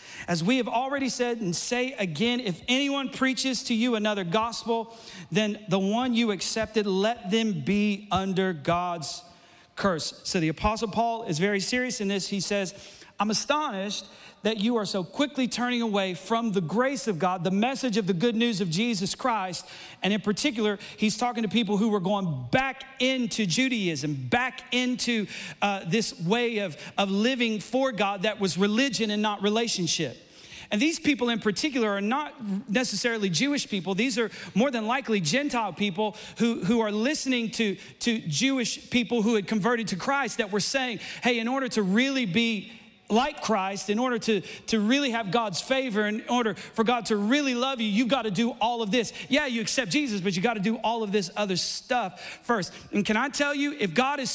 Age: 40-59